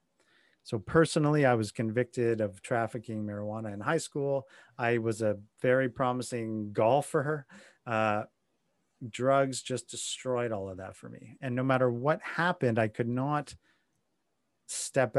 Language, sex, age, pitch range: English, male, 30-49, 115-150 Hz